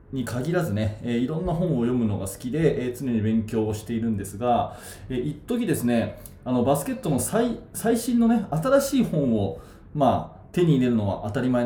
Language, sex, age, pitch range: Japanese, male, 20-39, 105-150 Hz